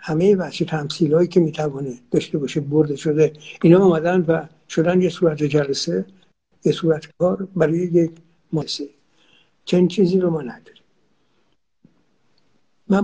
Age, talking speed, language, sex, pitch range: 60-79, 135 wpm, Persian, male, 155-175 Hz